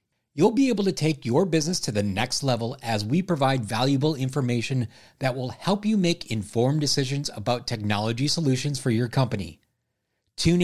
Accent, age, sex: American, 30-49, male